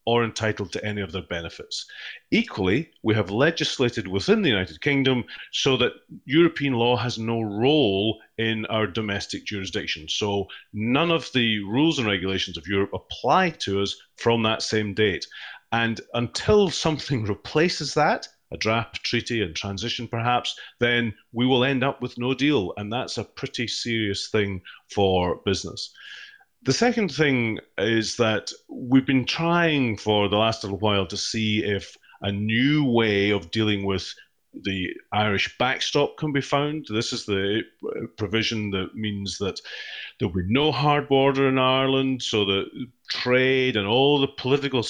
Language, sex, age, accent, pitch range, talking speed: English, male, 30-49, British, 100-130 Hz, 160 wpm